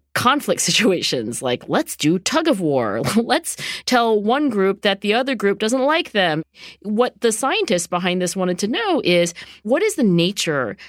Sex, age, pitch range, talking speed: female, 40-59, 160-210 Hz, 175 wpm